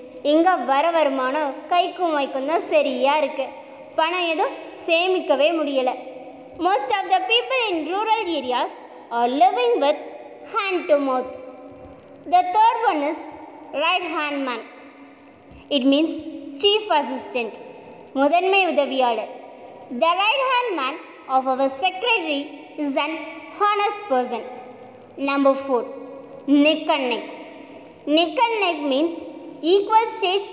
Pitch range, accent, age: 265-350 Hz, native, 20-39